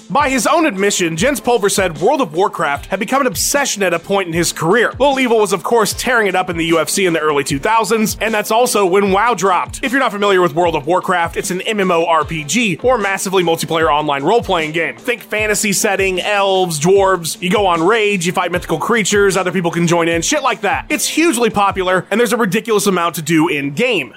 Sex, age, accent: male, 20-39, American